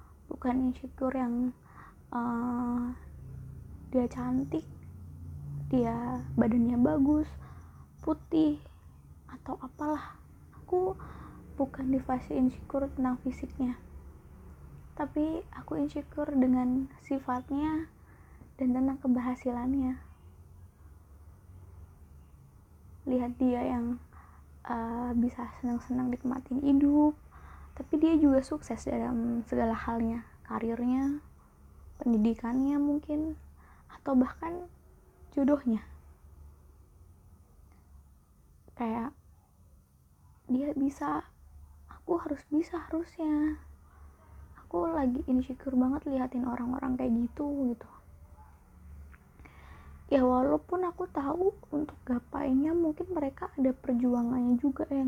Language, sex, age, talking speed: Indonesian, female, 20-39, 80 wpm